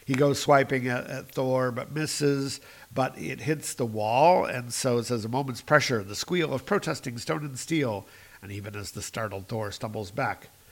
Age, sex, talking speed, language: 50-69, male, 195 wpm, English